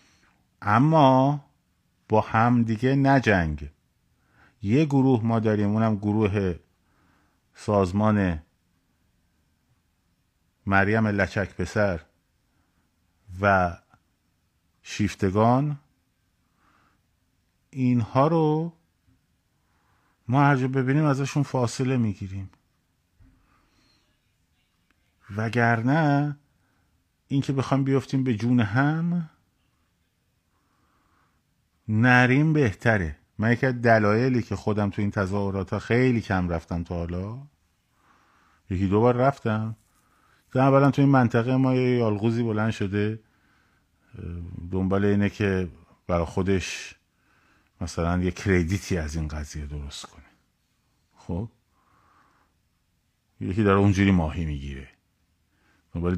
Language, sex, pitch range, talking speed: Persian, male, 85-120 Hz, 85 wpm